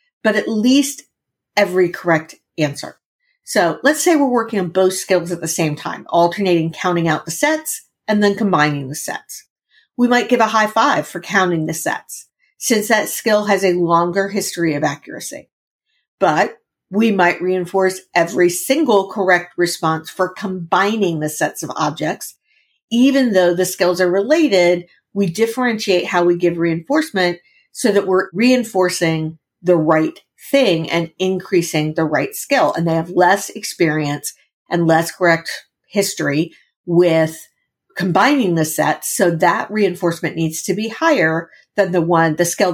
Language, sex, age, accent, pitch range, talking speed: English, female, 50-69, American, 165-210 Hz, 155 wpm